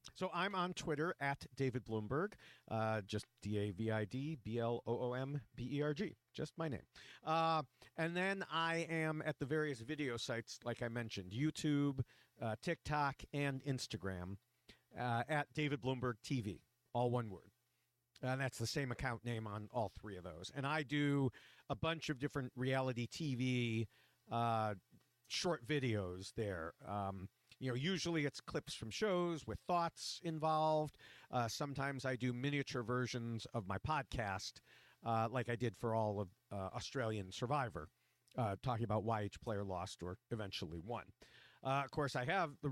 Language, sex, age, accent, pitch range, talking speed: English, male, 50-69, American, 110-145 Hz, 155 wpm